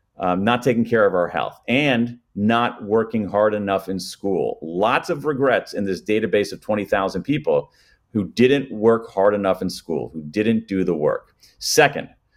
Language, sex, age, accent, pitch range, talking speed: English, male, 40-59, American, 100-130 Hz, 175 wpm